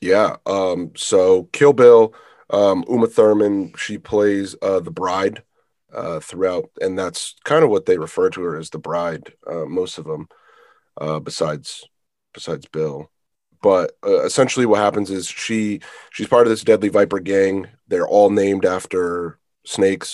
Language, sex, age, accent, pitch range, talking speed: English, male, 30-49, American, 90-130 Hz, 160 wpm